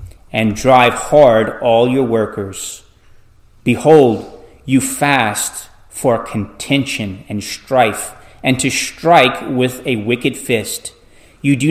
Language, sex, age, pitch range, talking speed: English, male, 30-49, 110-130 Hz, 115 wpm